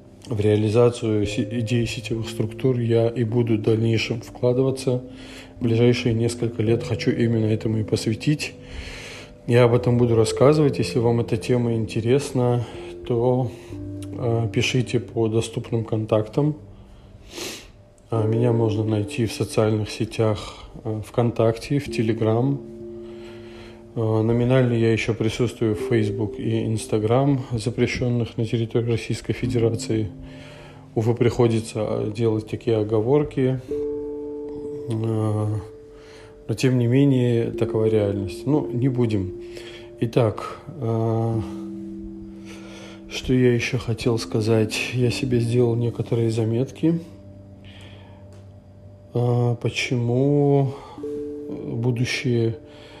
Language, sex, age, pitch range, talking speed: Russian, male, 20-39, 110-125 Hz, 95 wpm